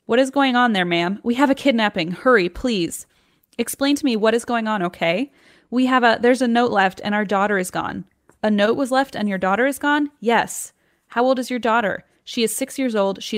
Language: English